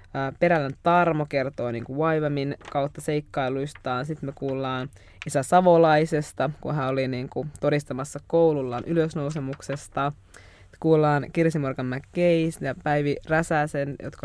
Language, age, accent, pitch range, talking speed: Finnish, 20-39, native, 135-170 Hz, 120 wpm